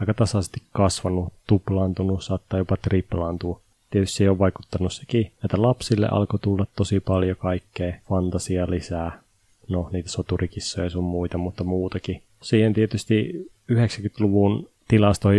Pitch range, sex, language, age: 90-105 Hz, male, Finnish, 20-39